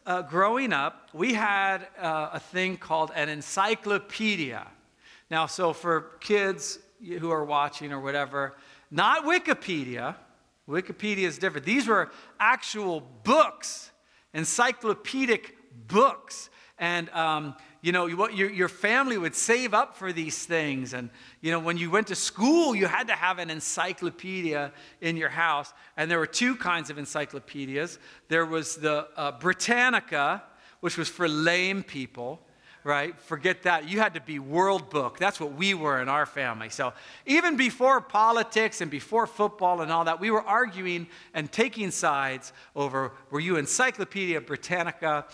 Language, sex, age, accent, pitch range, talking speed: English, male, 50-69, American, 150-205 Hz, 155 wpm